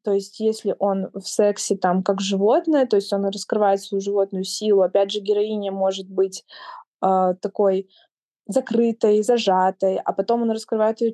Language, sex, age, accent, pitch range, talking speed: Russian, female, 20-39, native, 200-230 Hz, 160 wpm